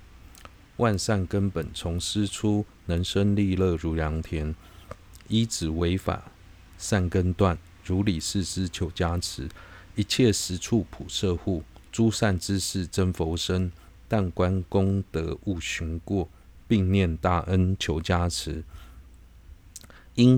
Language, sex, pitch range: Chinese, male, 80-100 Hz